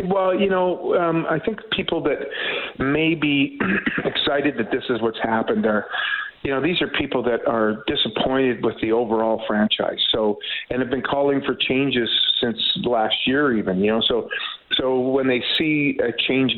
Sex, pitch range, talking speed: male, 120-150 Hz, 175 wpm